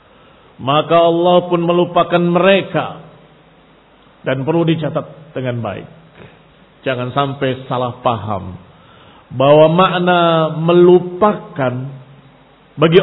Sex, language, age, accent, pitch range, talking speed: male, Indonesian, 50-69, native, 145-215 Hz, 85 wpm